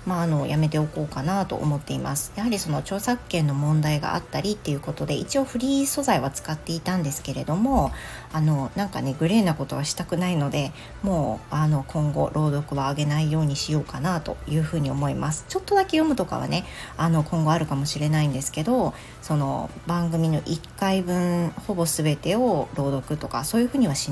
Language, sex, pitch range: Japanese, female, 150-185 Hz